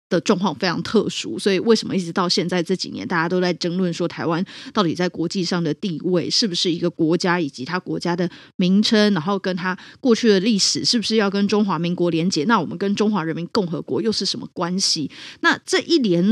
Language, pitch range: Chinese, 175-225 Hz